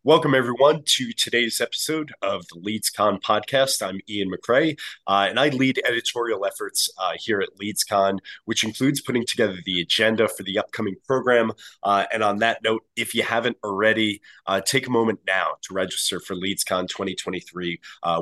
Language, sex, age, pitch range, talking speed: English, male, 30-49, 95-120 Hz, 170 wpm